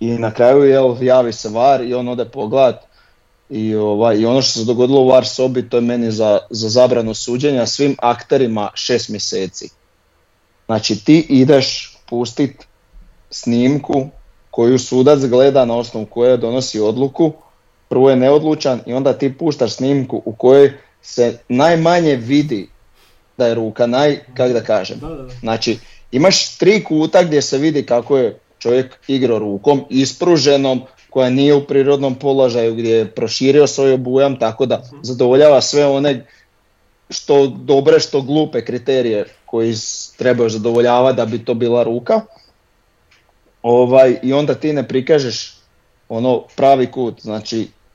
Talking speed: 145 wpm